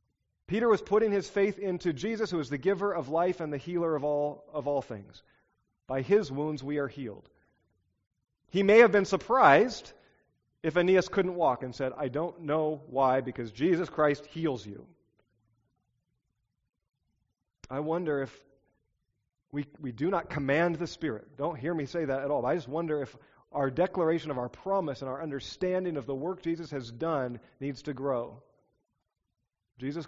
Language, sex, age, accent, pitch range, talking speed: English, male, 40-59, American, 130-175 Hz, 175 wpm